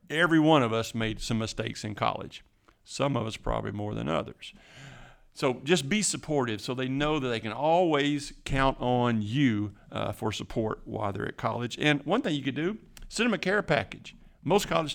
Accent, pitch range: American, 115-155 Hz